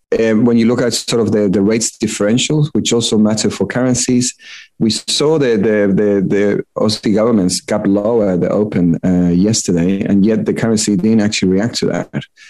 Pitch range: 95-110 Hz